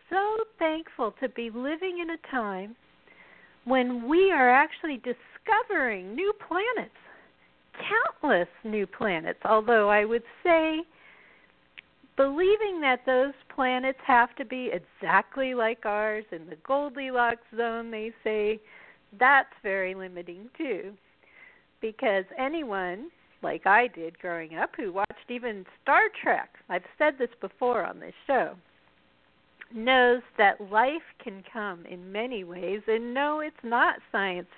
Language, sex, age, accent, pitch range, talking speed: English, female, 50-69, American, 195-270 Hz, 130 wpm